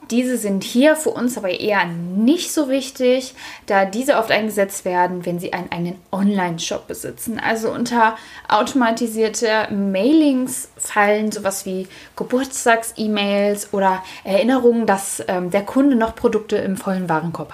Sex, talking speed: female, 135 wpm